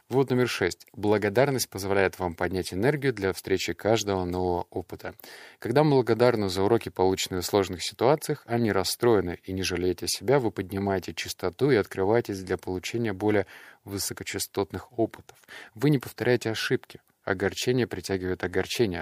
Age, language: 20-39, Russian